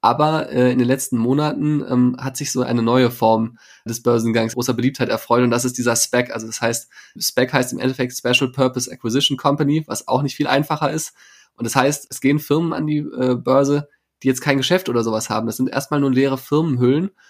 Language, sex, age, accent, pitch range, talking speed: German, male, 20-39, German, 125-140 Hz, 220 wpm